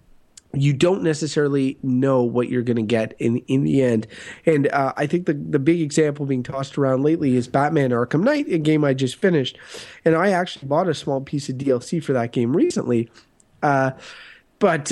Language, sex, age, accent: English, male, 30-49, American